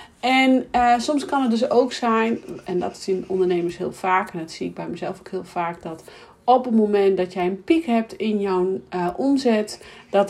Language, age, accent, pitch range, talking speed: Dutch, 40-59, Dutch, 180-225 Hz, 215 wpm